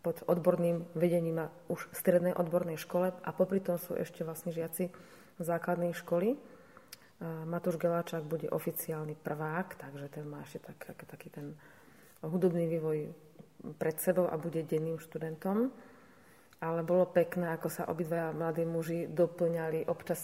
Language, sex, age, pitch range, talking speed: Slovak, female, 30-49, 160-175 Hz, 140 wpm